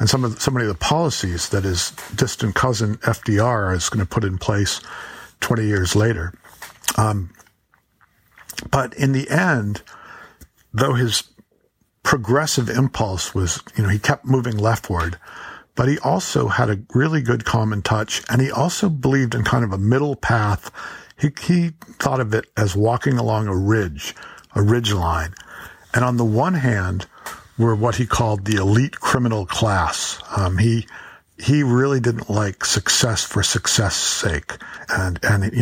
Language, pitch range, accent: English, 100-125 Hz, American